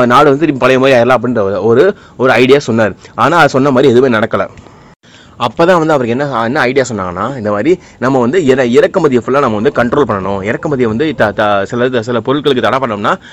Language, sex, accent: Tamil, male, native